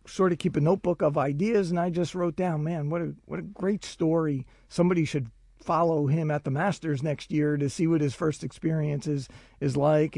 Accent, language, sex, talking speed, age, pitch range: American, English, male, 220 wpm, 50-69, 145-175 Hz